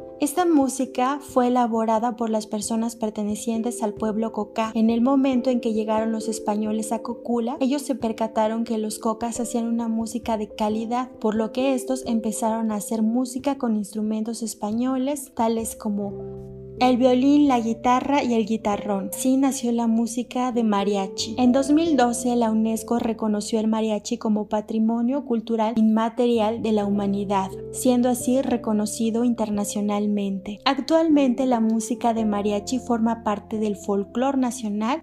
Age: 20-39